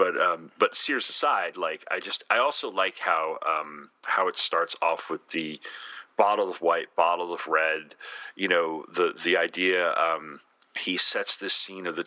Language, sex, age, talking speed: English, male, 30-49, 185 wpm